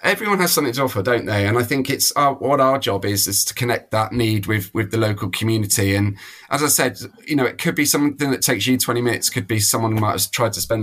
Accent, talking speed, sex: British, 275 wpm, male